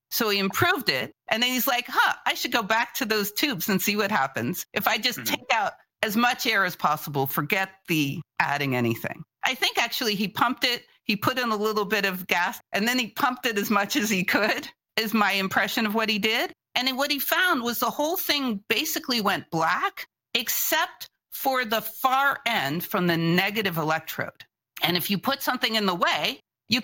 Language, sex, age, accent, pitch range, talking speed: English, female, 50-69, American, 180-260 Hz, 210 wpm